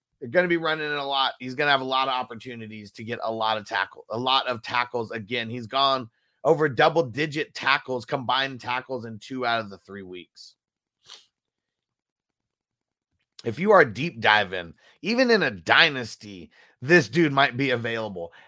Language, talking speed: English, 180 wpm